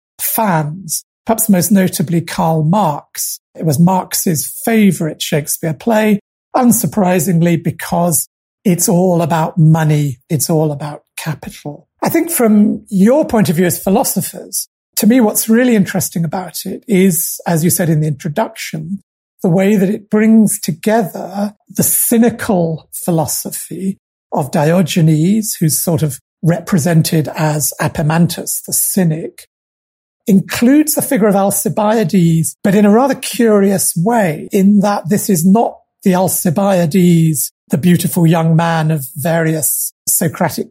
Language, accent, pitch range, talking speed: English, British, 160-200 Hz, 130 wpm